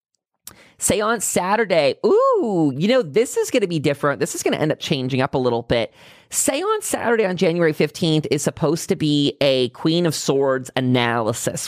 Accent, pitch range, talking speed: American, 130-180 Hz, 185 wpm